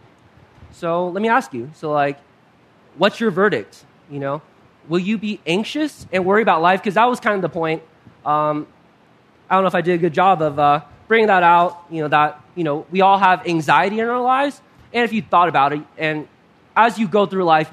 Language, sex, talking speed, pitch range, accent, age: English, male, 225 wpm, 155-215 Hz, American, 20-39